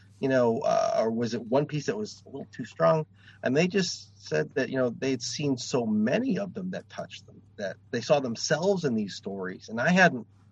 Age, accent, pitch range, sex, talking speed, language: 30-49, American, 105-170 Hz, male, 230 wpm, English